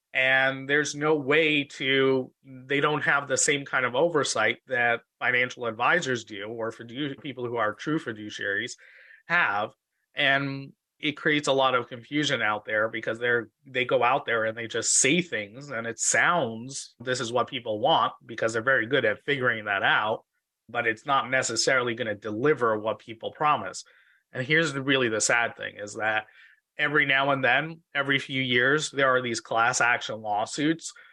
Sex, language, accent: male, English, American